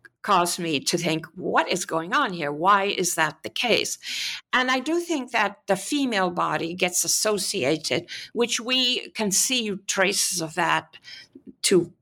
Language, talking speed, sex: English, 160 wpm, female